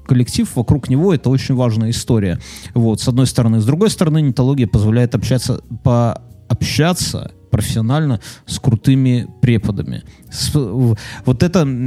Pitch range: 120-155 Hz